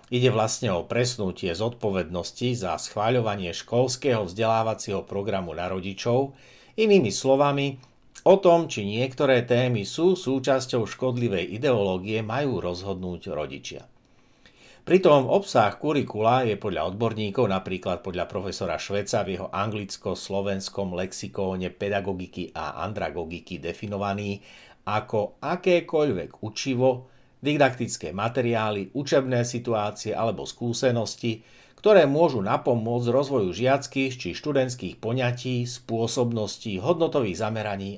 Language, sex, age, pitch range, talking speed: Slovak, male, 60-79, 100-130 Hz, 100 wpm